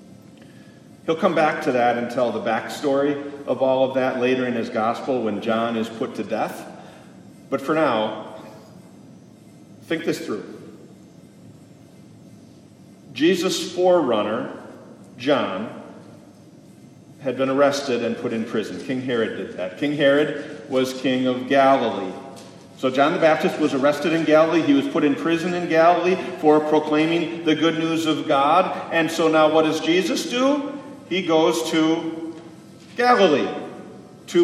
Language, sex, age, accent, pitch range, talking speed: English, male, 50-69, American, 145-205 Hz, 145 wpm